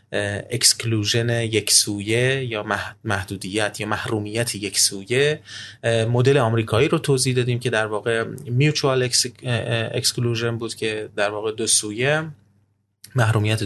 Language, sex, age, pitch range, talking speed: Persian, male, 30-49, 105-125 Hz, 120 wpm